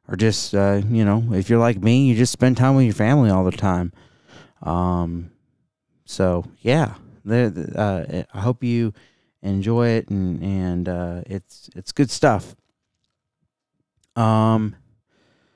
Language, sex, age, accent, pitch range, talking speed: English, male, 30-49, American, 95-125 Hz, 140 wpm